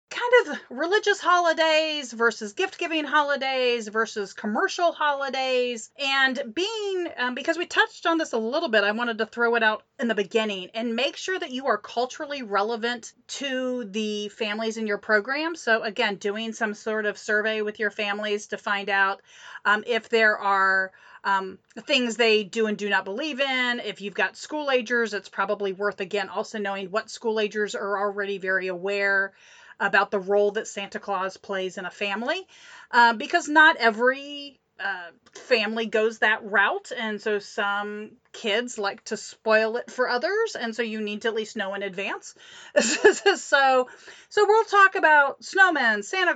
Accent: American